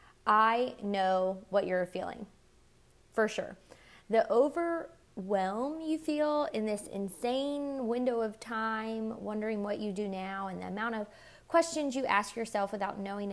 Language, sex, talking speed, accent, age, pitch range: English, female, 145 wpm, American, 20-39, 195-235 Hz